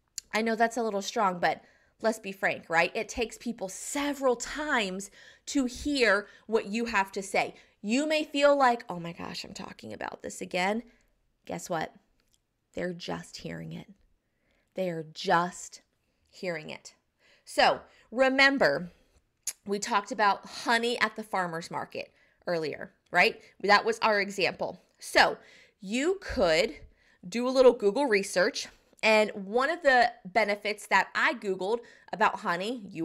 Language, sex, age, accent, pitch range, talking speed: English, female, 20-39, American, 195-255 Hz, 145 wpm